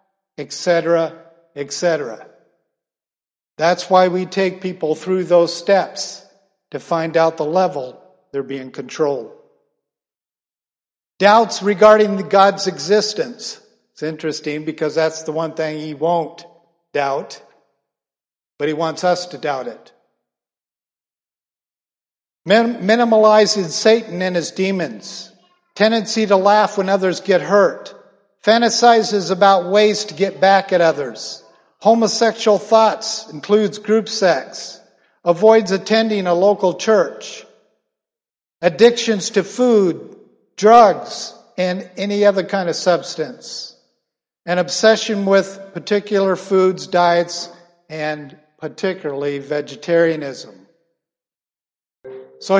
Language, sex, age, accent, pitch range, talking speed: English, male, 50-69, American, 170-210 Hz, 100 wpm